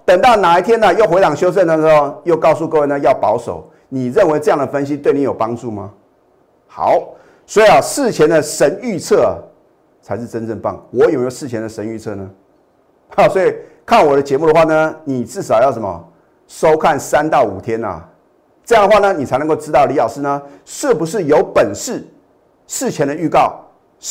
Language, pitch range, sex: Chinese, 115-155 Hz, male